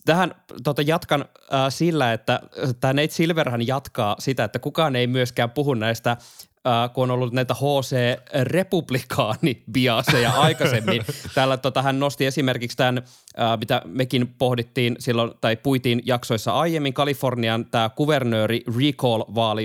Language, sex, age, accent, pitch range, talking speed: Finnish, male, 20-39, native, 110-130 Hz, 130 wpm